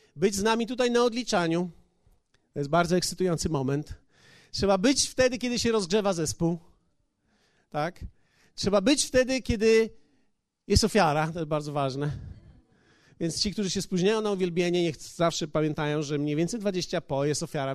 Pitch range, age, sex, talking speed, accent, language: 155-200 Hz, 40-59, male, 155 wpm, native, Polish